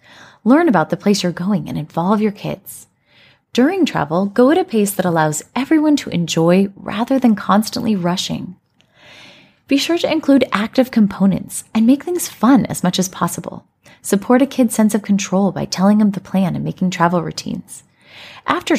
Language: English